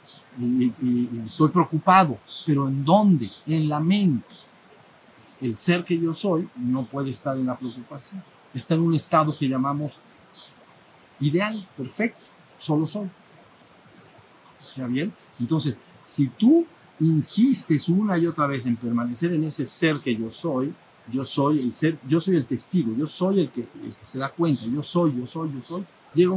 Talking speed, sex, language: 175 wpm, male, Spanish